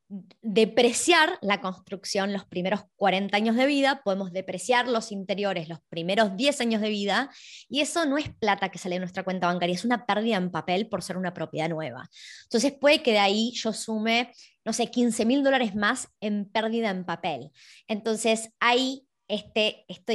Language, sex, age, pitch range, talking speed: Spanish, male, 20-39, 190-255 Hz, 180 wpm